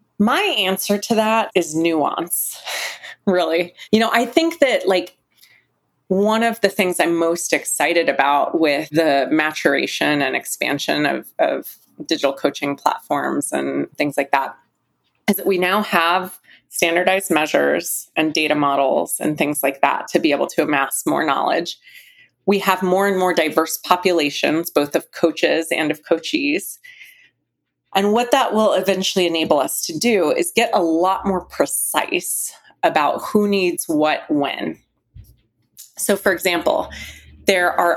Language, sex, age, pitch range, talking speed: English, female, 20-39, 160-205 Hz, 150 wpm